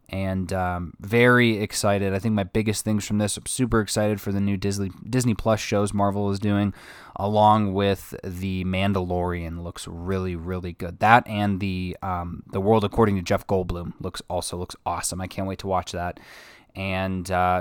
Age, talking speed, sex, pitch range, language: 20-39, 180 wpm, male, 95-105 Hz, English